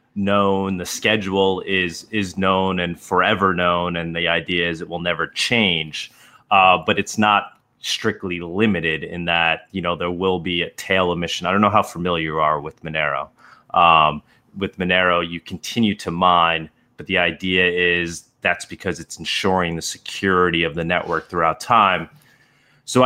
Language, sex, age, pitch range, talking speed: English, male, 30-49, 90-110 Hz, 170 wpm